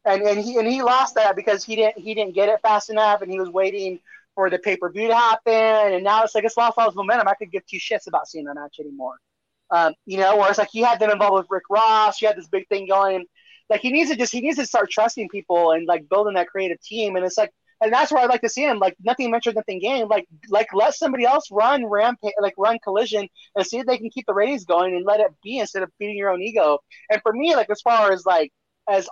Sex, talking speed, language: male, 275 wpm, English